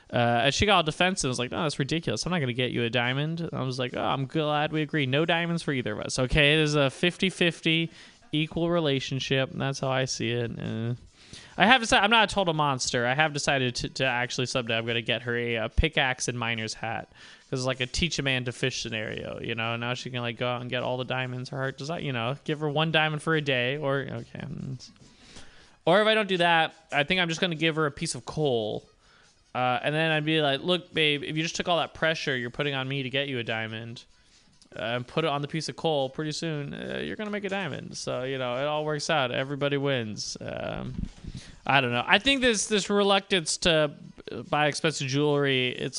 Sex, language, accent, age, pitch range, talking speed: male, English, American, 20-39, 125-160 Hz, 255 wpm